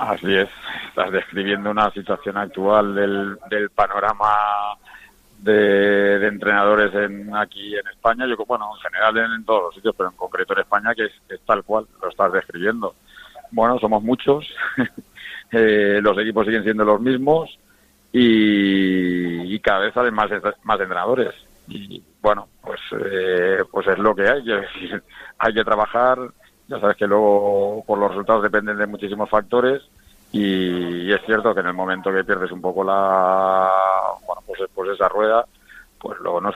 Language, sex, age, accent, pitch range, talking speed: Spanish, male, 50-69, Spanish, 95-110 Hz, 170 wpm